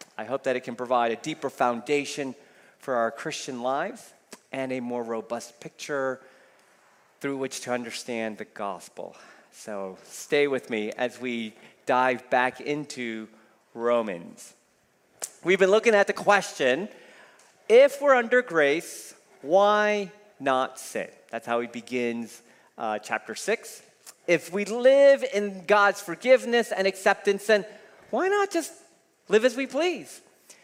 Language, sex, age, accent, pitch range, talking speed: English, male, 40-59, American, 135-225 Hz, 135 wpm